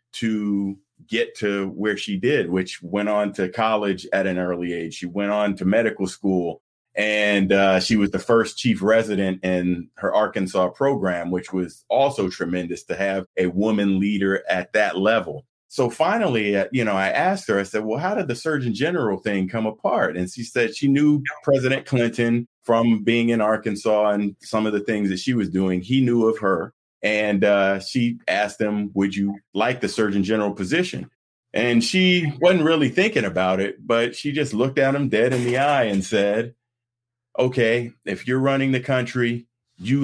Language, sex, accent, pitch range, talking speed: English, male, American, 100-125 Hz, 190 wpm